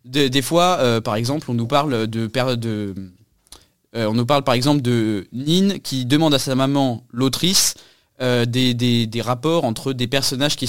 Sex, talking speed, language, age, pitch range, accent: male, 195 wpm, French, 20-39, 120-145 Hz, French